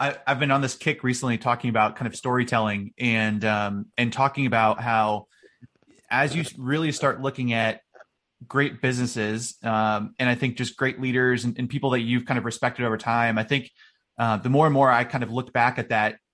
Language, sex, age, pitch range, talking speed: English, male, 30-49, 120-135 Hz, 205 wpm